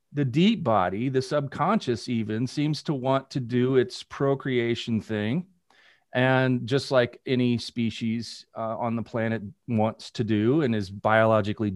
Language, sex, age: English, male, 40-59